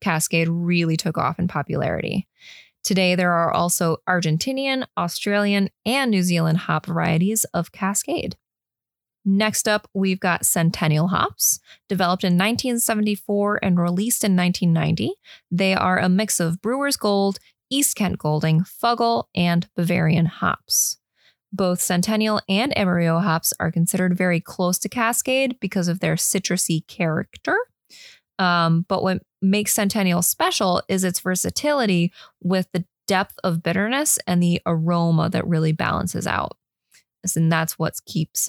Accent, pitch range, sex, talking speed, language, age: American, 170-205 Hz, female, 135 wpm, English, 20-39